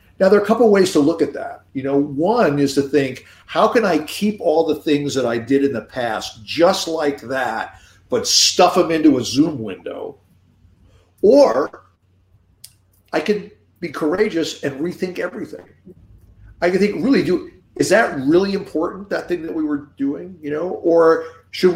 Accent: American